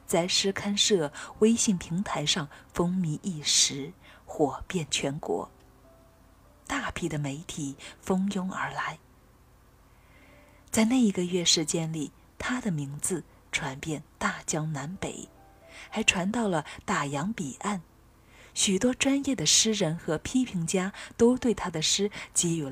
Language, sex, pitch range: Chinese, female, 155-210 Hz